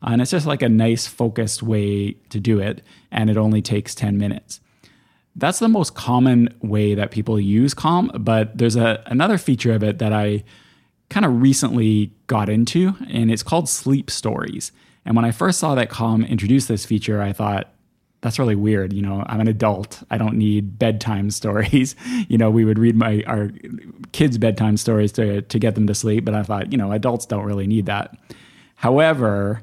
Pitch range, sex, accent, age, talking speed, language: 105-120 Hz, male, American, 20-39, 195 wpm, English